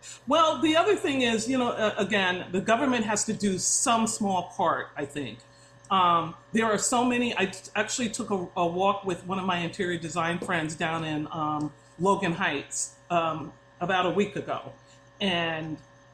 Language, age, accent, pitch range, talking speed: English, 40-59, American, 165-210 Hz, 175 wpm